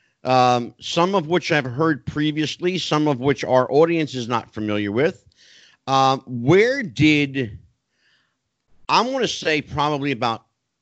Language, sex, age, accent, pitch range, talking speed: English, male, 50-69, American, 110-150 Hz, 145 wpm